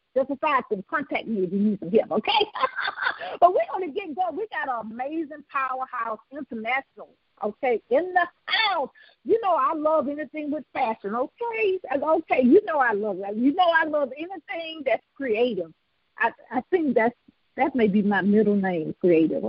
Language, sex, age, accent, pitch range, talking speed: English, female, 50-69, American, 215-335 Hz, 180 wpm